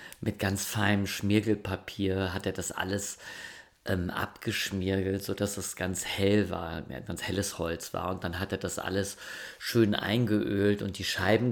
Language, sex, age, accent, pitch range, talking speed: German, male, 40-59, German, 90-105 Hz, 155 wpm